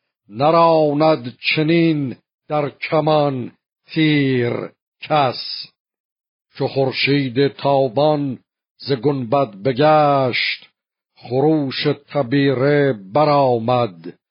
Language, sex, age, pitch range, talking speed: Persian, male, 50-69, 130-155 Hz, 65 wpm